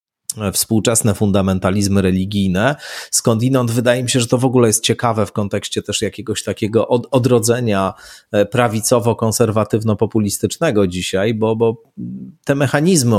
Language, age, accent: Polish, 30-49, native